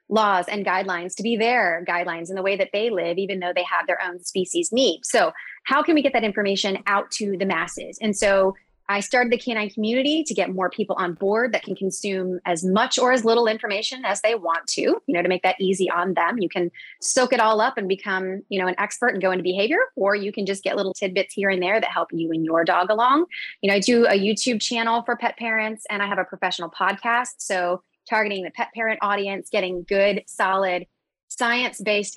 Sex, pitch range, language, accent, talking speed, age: female, 185-225 Hz, English, American, 235 wpm, 20-39